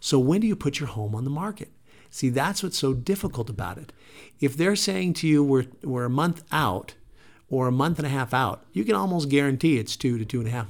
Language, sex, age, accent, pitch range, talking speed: English, male, 50-69, American, 115-145 Hz, 250 wpm